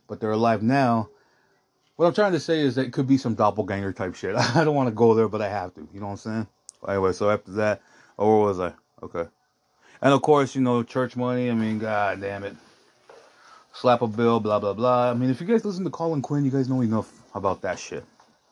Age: 30-49